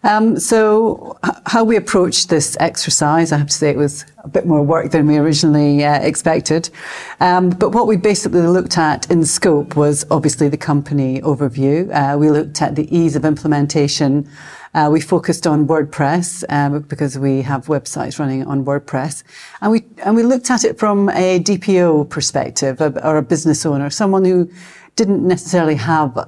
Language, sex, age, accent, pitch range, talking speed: English, female, 40-59, British, 145-170 Hz, 175 wpm